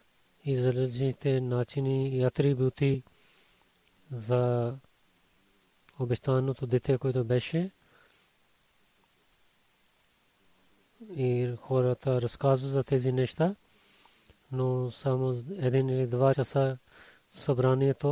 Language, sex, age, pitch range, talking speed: Bulgarian, male, 30-49, 125-145 Hz, 75 wpm